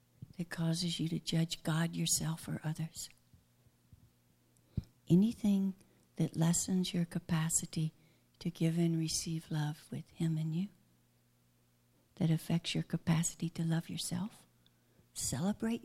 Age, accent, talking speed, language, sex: 60-79, American, 115 wpm, English, female